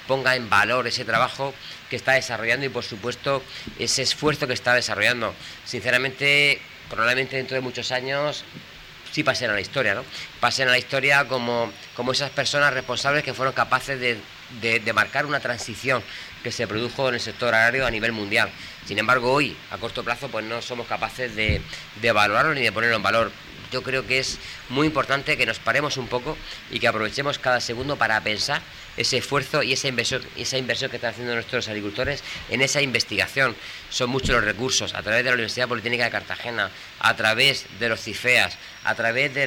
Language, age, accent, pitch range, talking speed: Spanish, 30-49, Spanish, 115-135 Hz, 190 wpm